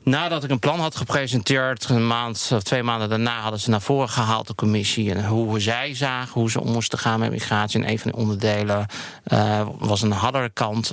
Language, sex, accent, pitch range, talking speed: Dutch, male, Dutch, 105-120 Hz, 220 wpm